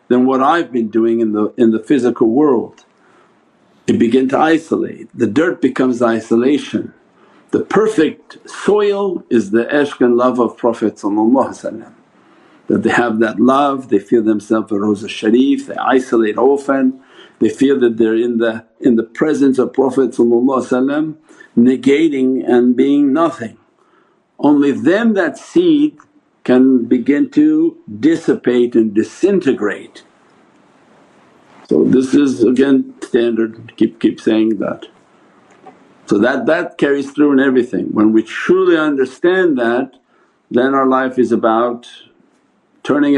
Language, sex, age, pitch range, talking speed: English, male, 50-69, 115-145 Hz, 130 wpm